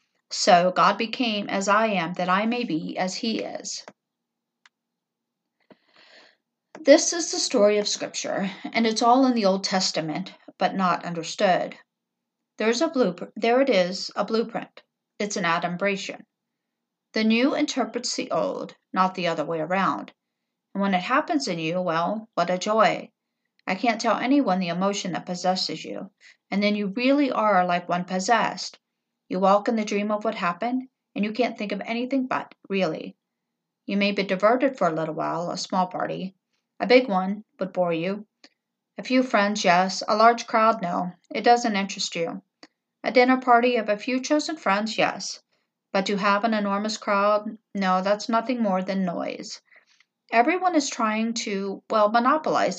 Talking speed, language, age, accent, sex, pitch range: 170 wpm, English, 50-69, American, female, 185-240 Hz